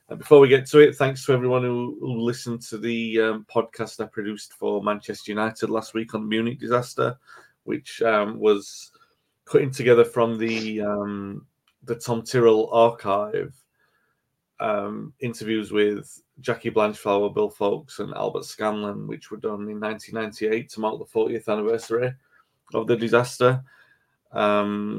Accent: British